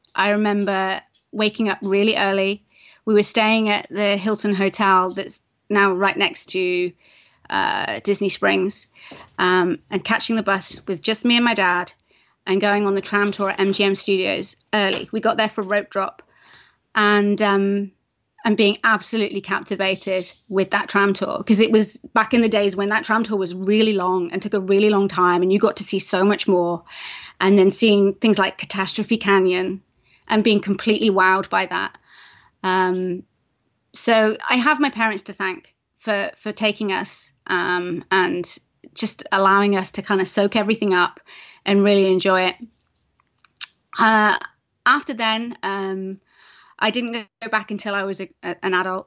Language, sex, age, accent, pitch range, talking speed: English, female, 30-49, British, 190-215 Hz, 170 wpm